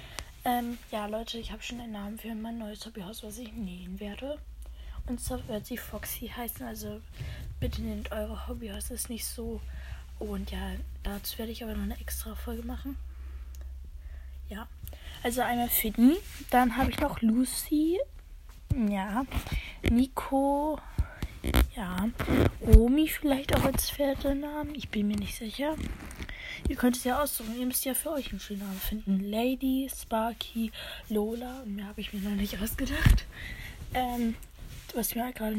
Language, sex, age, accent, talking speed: German, female, 20-39, German, 155 wpm